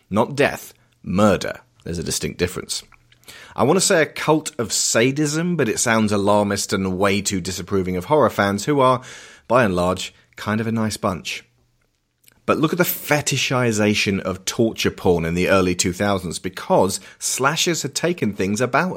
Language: English